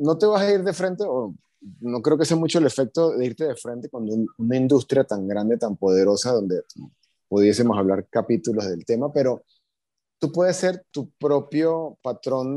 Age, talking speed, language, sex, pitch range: 30-49, 185 wpm, Spanish, male, 110-145 Hz